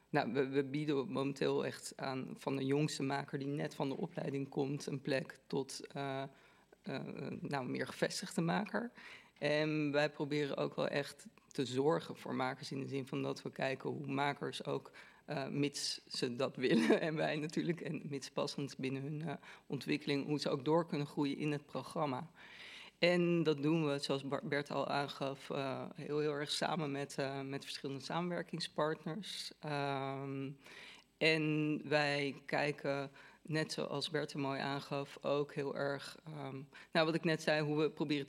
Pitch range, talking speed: 140-155 Hz, 165 wpm